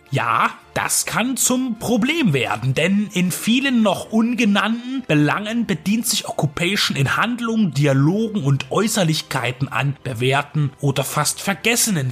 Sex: male